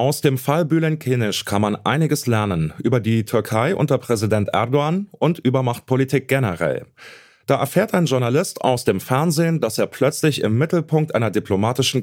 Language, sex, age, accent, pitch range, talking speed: German, male, 30-49, German, 105-140 Hz, 160 wpm